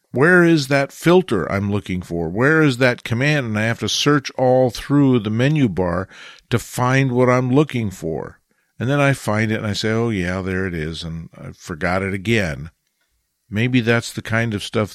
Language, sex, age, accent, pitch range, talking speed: English, male, 50-69, American, 100-130 Hz, 205 wpm